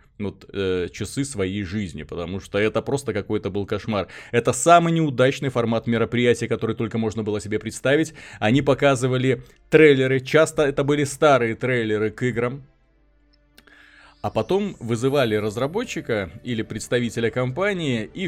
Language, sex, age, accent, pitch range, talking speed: Russian, male, 20-39, native, 105-140 Hz, 130 wpm